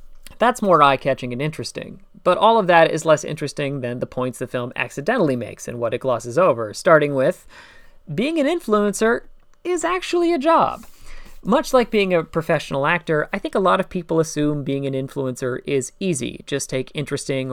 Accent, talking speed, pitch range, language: American, 185 wpm, 130-165 Hz, English